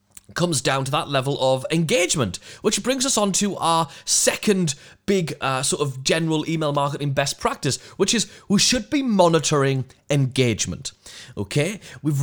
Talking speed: 155 wpm